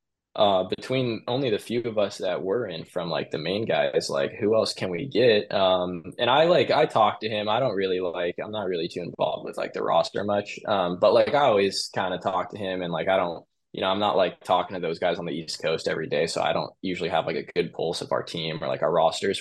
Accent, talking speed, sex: American, 270 wpm, male